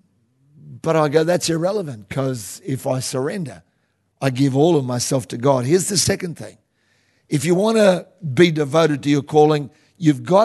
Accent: Australian